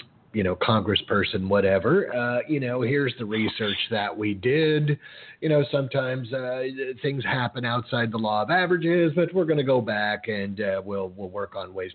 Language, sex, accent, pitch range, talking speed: English, male, American, 105-135 Hz, 185 wpm